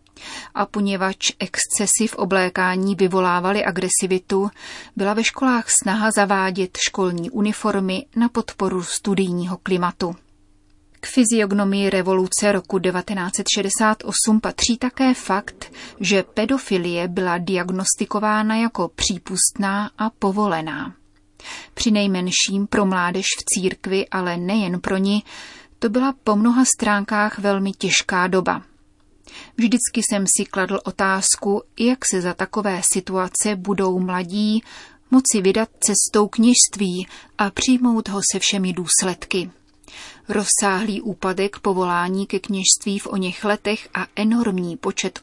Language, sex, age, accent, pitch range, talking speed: Czech, female, 30-49, native, 185-215 Hz, 115 wpm